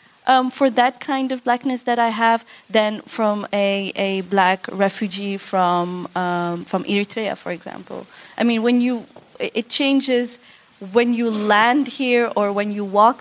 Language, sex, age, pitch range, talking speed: Dutch, female, 20-39, 190-230 Hz, 160 wpm